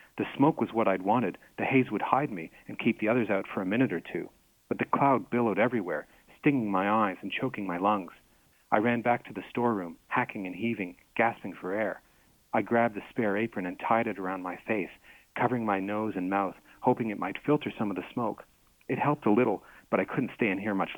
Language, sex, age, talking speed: English, male, 40-59, 230 wpm